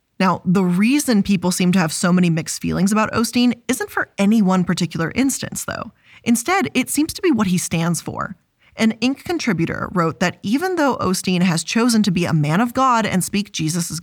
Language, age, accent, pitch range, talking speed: English, 20-39, American, 175-260 Hz, 205 wpm